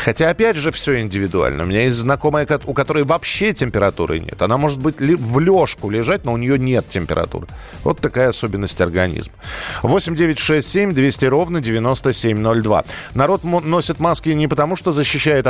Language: Russian